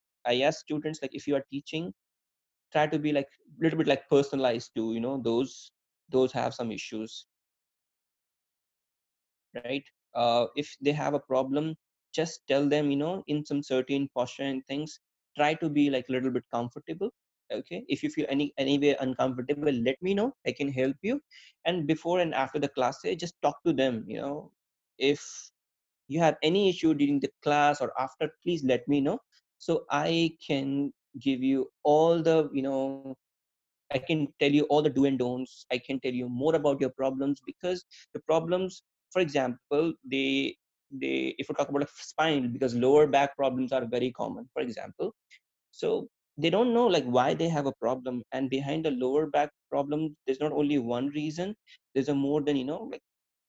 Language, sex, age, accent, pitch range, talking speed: Czech, male, 20-39, Indian, 130-155 Hz, 190 wpm